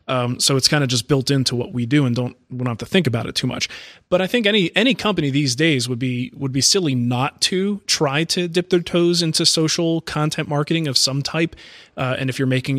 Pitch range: 135-170 Hz